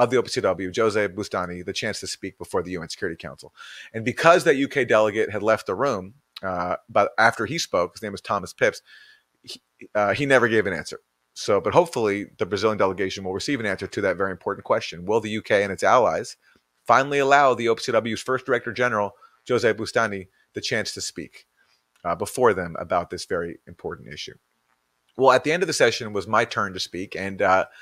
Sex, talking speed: male, 205 wpm